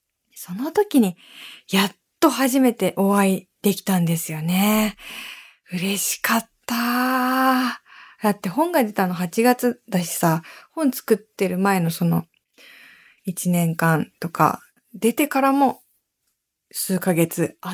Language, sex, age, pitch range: Japanese, female, 20-39, 180-245 Hz